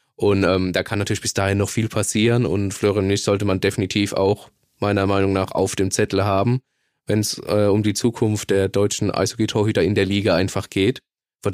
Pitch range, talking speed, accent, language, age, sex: 100-115 Hz, 200 wpm, German, German, 20-39, male